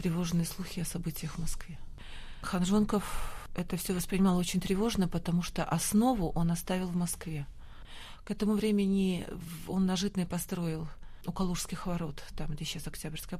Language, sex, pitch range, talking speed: Russian, female, 165-195 Hz, 145 wpm